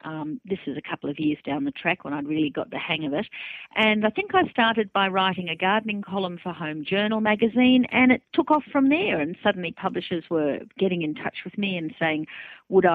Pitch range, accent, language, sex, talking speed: 160-215 Hz, Australian, English, female, 230 wpm